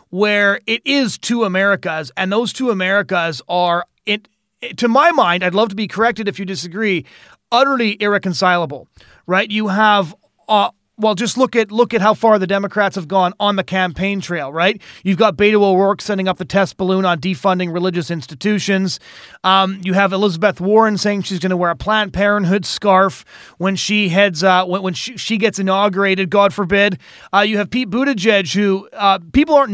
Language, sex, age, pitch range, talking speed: English, male, 30-49, 185-225 Hz, 185 wpm